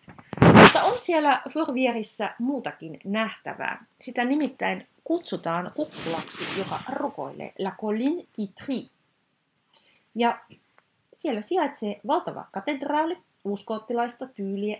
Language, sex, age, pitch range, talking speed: Finnish, female, 30-49, 180-260 Hz, 90 wpm